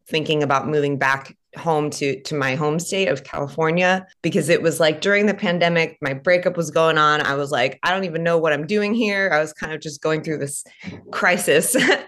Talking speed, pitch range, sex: 220 wpm, 145-175 Hz, female